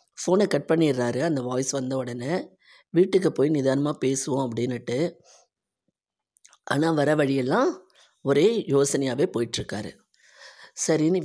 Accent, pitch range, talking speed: native, 125-165 Hz, 100 wpm